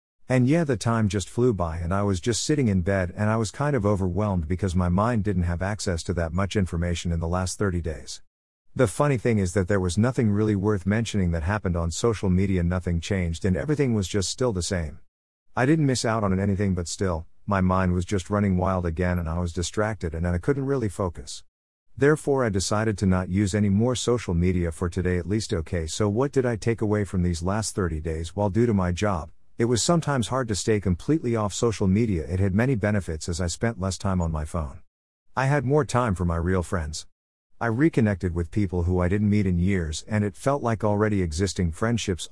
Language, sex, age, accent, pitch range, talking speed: English, male, 50-69, American, 90-110 Hz, 230 wpm